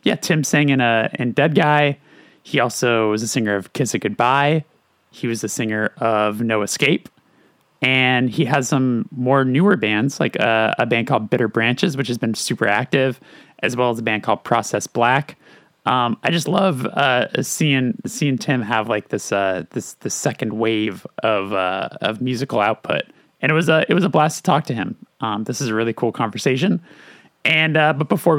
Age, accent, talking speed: 20-39, American, 200 wpm